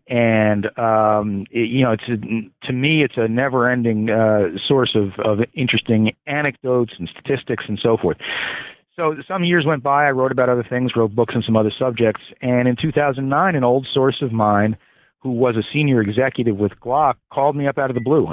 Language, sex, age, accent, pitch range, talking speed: English, male, 40-59, American, 105-125 Hz, 200 wpm